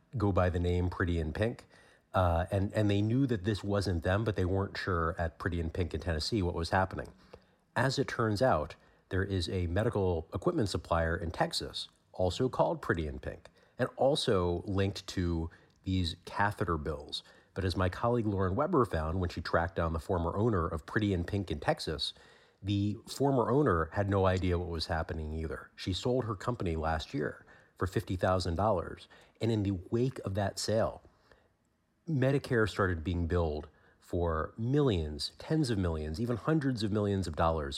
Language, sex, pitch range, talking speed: English, male, 85-110 Hz, 180 wpm